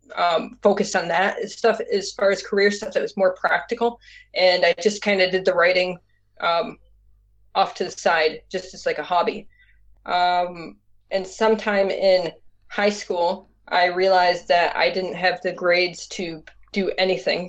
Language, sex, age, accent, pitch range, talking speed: English, female, 20-39, American, 165-200 Hz, 170 wpm